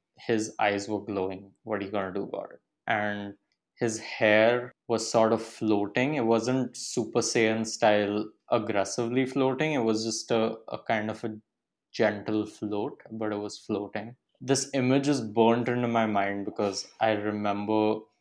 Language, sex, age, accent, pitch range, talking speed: English, male, 20-39, Indian, 105-125 Hz, 160 wpm